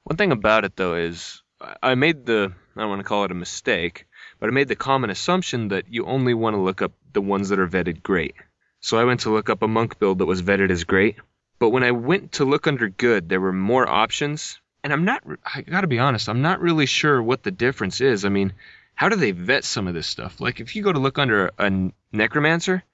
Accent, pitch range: American, 95-130 Hz